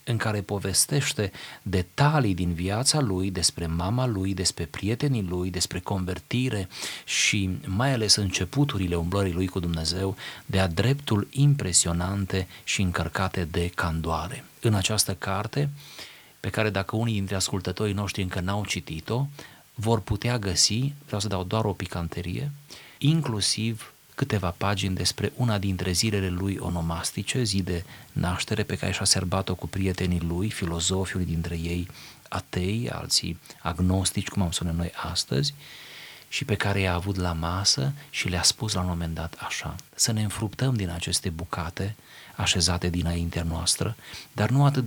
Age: 30-49